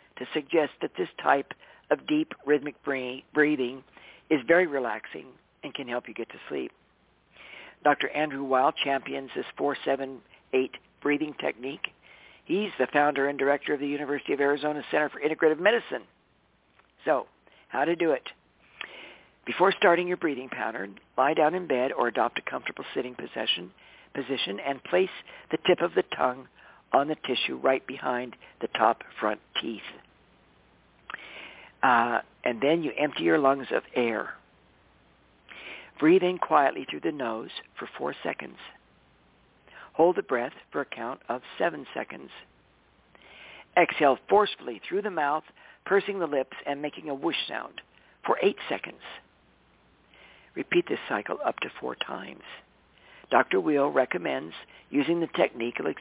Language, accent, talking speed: English, American, 140 wpm